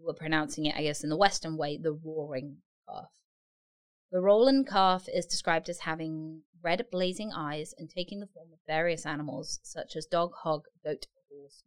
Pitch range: 155-185 Hz